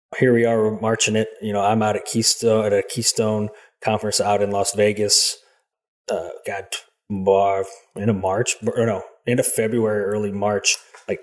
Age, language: 30-49, English